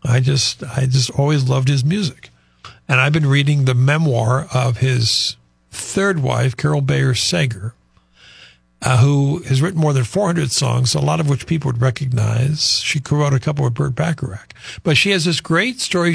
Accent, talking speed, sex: American, 180 wpm, male